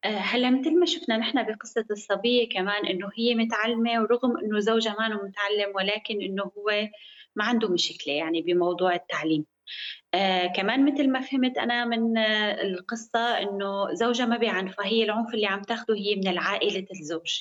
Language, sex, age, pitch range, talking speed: Arabic, female, 20-39, 200-245 Hz, 160 wpm